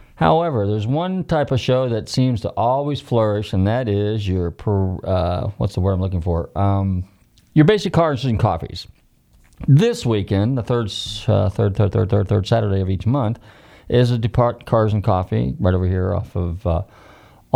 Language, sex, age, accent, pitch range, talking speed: English, male, 40-59, American, 95-125 Hz, 180 wpm